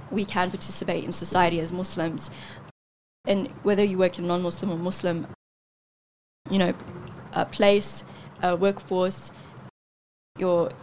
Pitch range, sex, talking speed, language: 165-190 Hz, female, 120 wpm, English